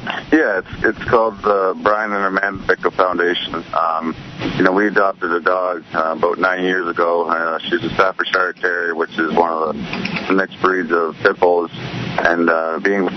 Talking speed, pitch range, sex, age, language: 180 wpm, 80-90 Hz, male, 30-49, English